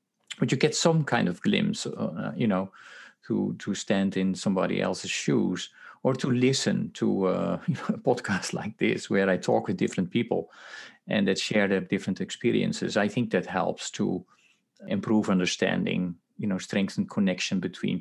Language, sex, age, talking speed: English, male, 40-59, 165 wpm